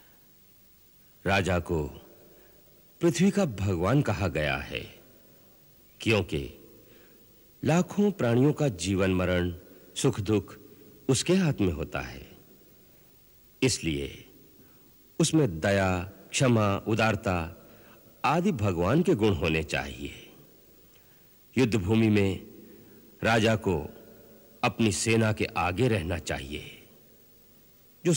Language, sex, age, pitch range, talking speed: Hindi, male, 60-79, 90-125 Hz, 95 wpm